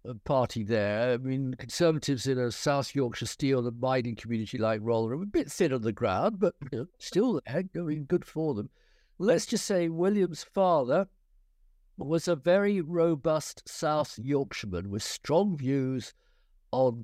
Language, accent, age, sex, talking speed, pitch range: English, British, 60-79, male, 170 wpm, 110-155 Hz